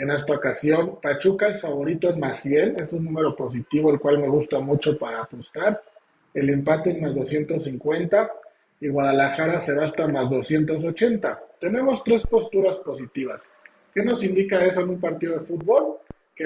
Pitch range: 150-200 Hz